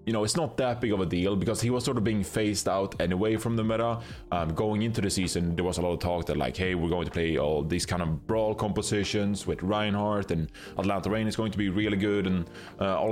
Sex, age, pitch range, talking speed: male, 20-39, 90-115 Hz, 270 wpm